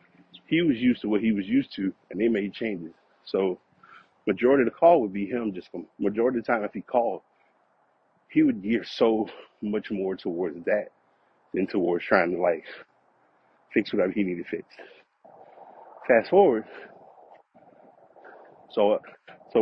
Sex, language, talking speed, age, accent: male, English, 160 wpm, 30-49, American